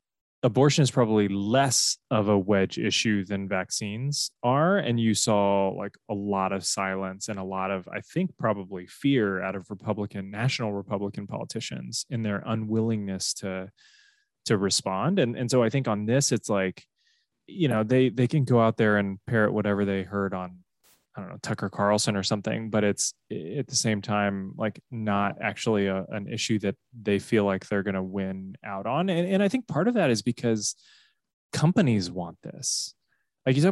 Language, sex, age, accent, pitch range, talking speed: English, male, 20-39, American, 100-125 Hz, 190 wpm